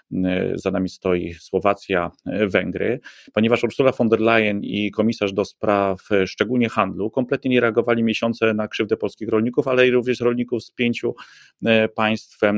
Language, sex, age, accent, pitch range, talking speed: Polish, male, 30-49, native, 100-115 Hz, 145 wpm